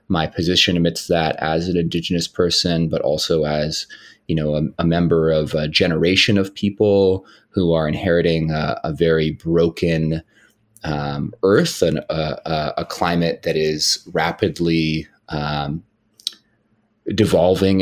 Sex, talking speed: male, 130 wpm